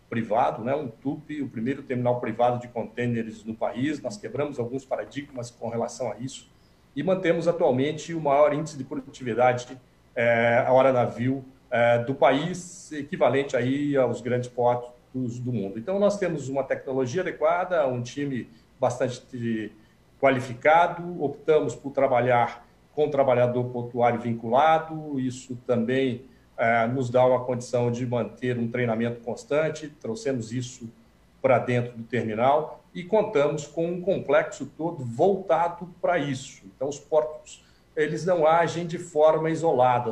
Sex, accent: male, Brazilian